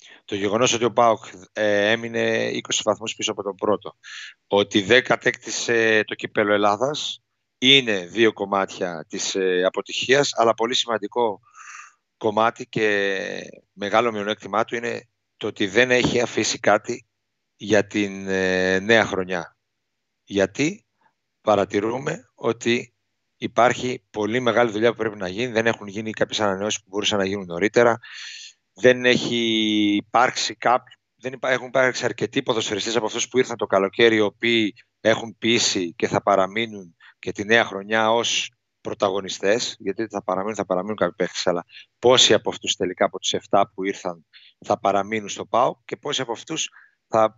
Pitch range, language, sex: 100-120 Hz, Greek, male